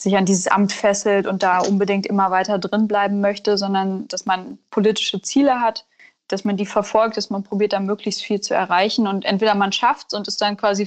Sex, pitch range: female, 190-210 Hz